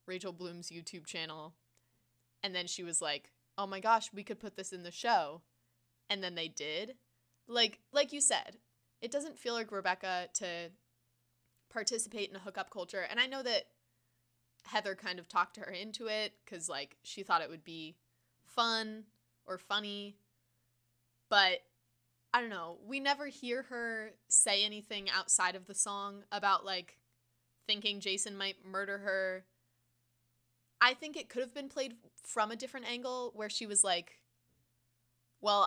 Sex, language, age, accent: female, English, 20-39, American